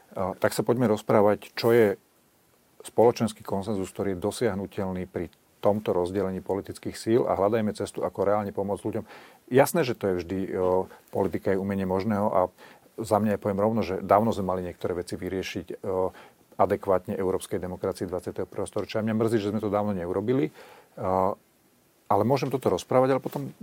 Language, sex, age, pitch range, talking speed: Slovak, male, 40-59, 95-115 Hz, 170 wpm